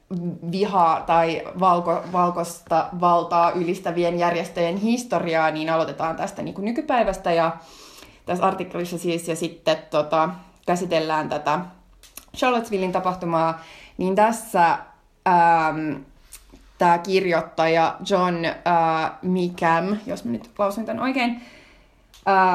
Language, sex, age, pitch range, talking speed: Finnish, female, 20-39, 165-195 Hz, 105 wpm